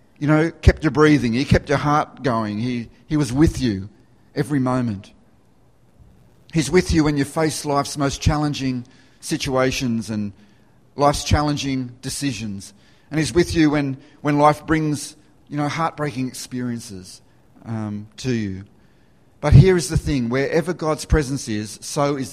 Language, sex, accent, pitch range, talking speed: English, male, Australian, 115-145 Hz, 155 wpm